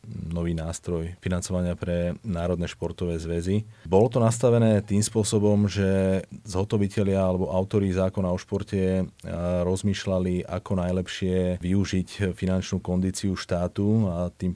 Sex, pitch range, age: male, 90-95 Hz, 30-49